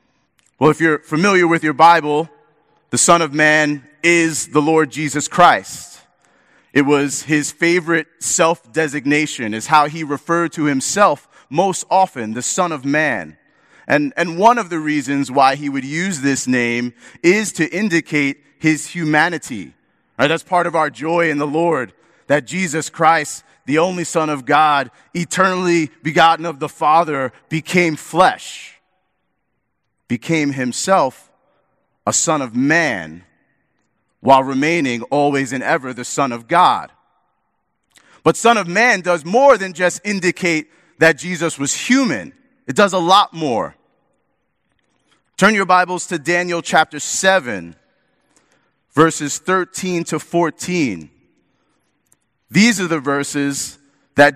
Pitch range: 145-175 Hz